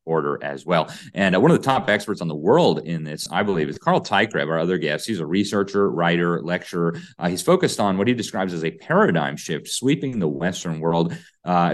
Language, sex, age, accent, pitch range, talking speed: English, male, 30-49, American, 80-95 Hz, 225 wpm